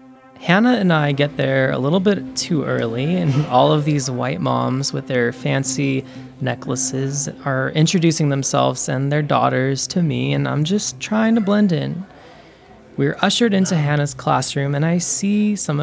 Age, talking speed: 20-39, 165 wpm